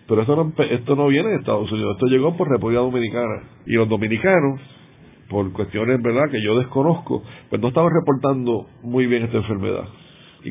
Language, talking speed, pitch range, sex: Spanish, 185 wpm, 110-135 Hz, male